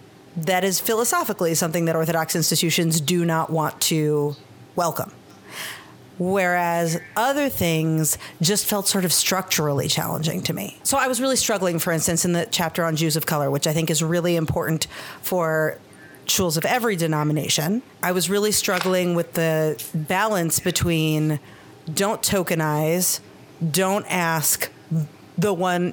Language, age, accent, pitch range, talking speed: English, 40-59, American, 155-180 Hz, 145 wpm